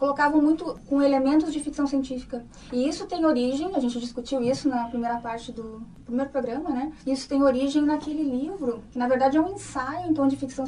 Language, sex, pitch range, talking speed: Arabic, female, 245-290 Hz, 200 wpm